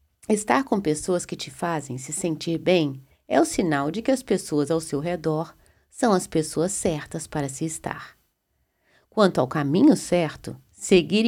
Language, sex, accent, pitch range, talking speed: Portuguese, female, Brazilian, 145-195 Hz, 165 wpm